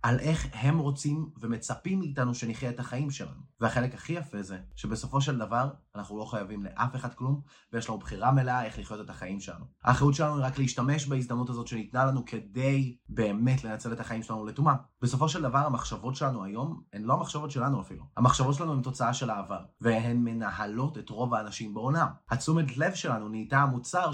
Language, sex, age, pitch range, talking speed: Hebrew, male, 20-39, 115-140 Hz, 190 wpm